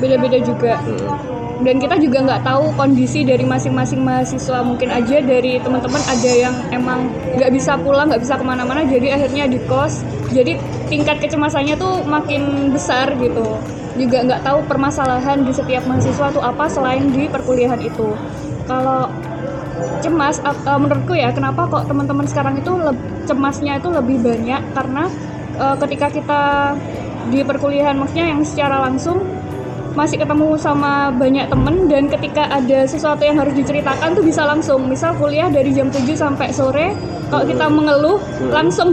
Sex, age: female, 20-39